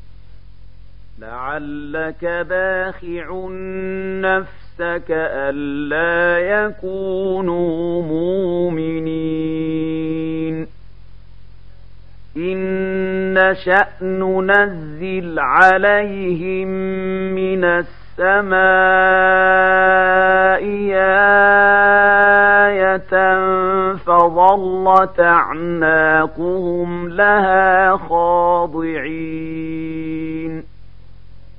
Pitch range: 150-185 Hz